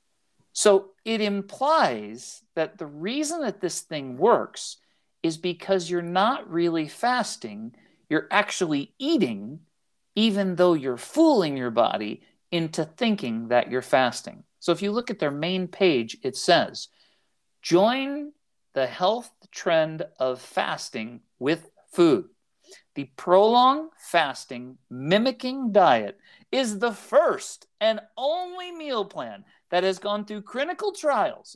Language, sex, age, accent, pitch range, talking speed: English, male, 50-69, American, 140-230 Hz, 125 wpm